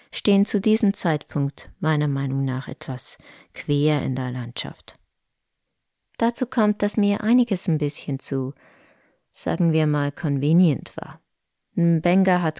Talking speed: 130 wpm